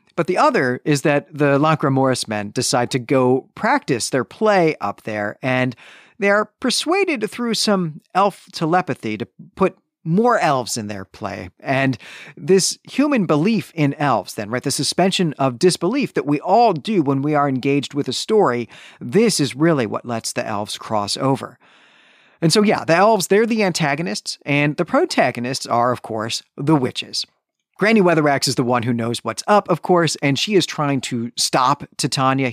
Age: 40-59